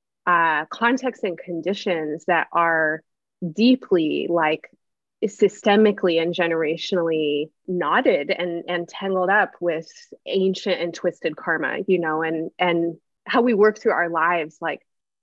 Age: 20-39